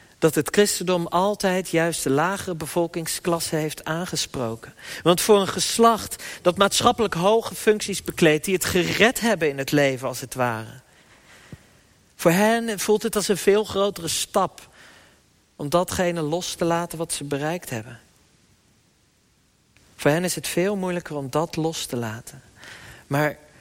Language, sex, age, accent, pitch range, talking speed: Dutch, male, 40-59, Dutch, 125-175 Hz, 150 wpm